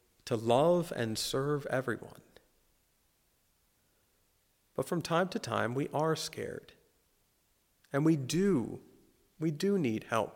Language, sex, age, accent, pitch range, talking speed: English, male, 40-59, American, 115-170 Hz, 115 wpm